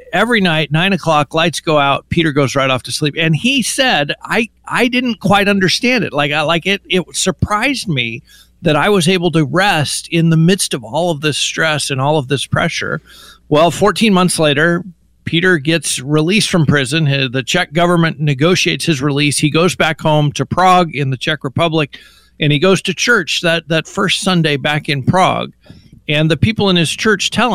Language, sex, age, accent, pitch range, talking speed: English, male, 50-69, American, 145-180 Hz, 200 wpm